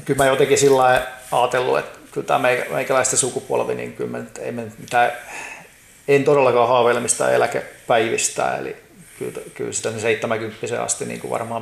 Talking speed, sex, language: 155 wpm, male, Finnish